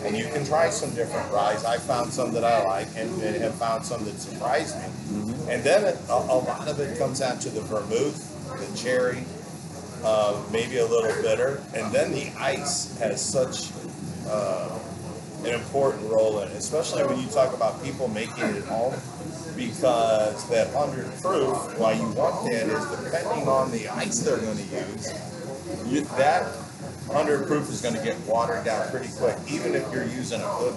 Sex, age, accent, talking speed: male, 40-59, American, 185 wpm